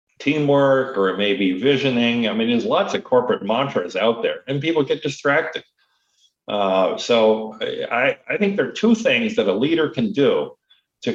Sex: male